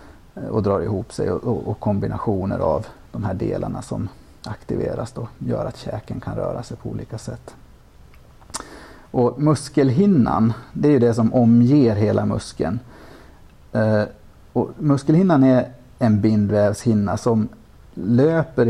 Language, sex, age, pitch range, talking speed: Swedish, male, 30-49, 100-125 Hz, 125 wpm